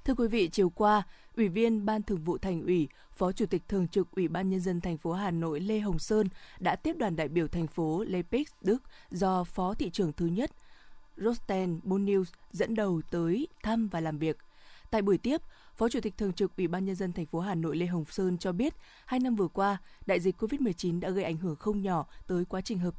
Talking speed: 235 wpm